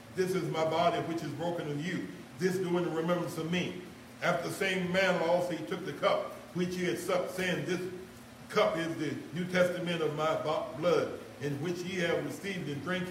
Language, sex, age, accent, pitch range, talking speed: English, male, 60-79, American, 160-180 Hz, 210 wpm